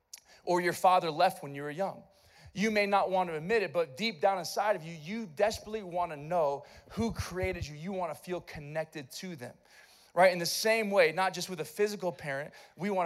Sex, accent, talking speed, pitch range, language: male, American, 225 wpm, 145-200 Hz, English